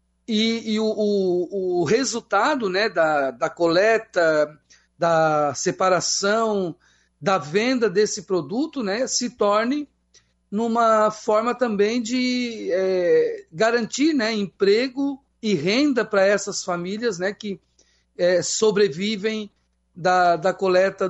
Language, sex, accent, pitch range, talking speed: Portuguese, male, Brazilian, 175-220 Hz, 110 wpm